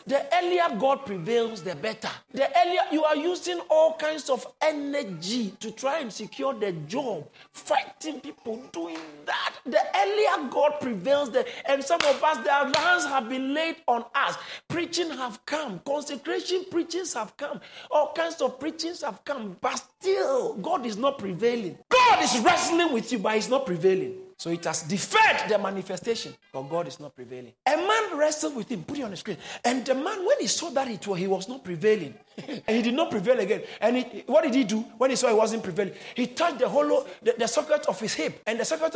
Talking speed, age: 205 wpm, 50-69